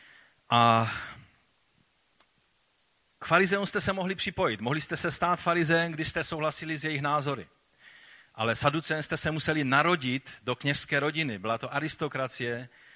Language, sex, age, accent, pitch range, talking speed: Czech, male, 40-59, native, 110-150 Hz, 135 wpm